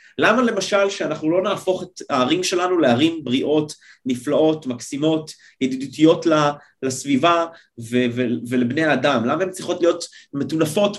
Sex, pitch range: male, 140-180 Hz